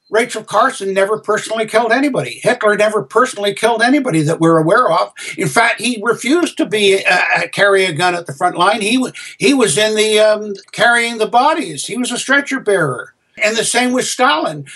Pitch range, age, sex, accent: 190-240 Hz, 60-79, male, American